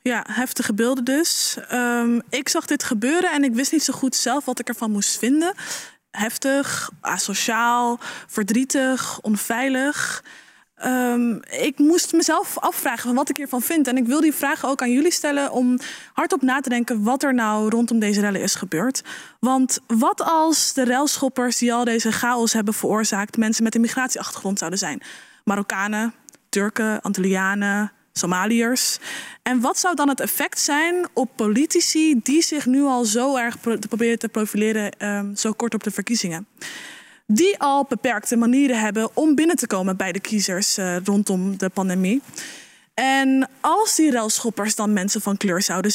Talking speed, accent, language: 165 wpm, Dutch, Dutch